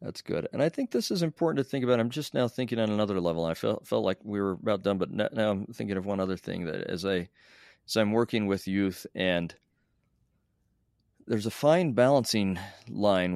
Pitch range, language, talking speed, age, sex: 90-115 Hz, English, 210 wpm, 40-59, male